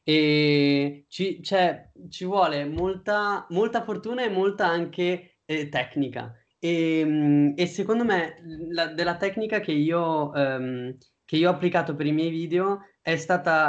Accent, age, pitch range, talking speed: native, 20-39, 140-175 Hz, 125 wpm